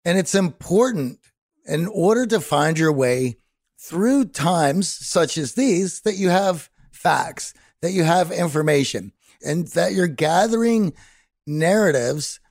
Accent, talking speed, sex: American, 130 wpm, male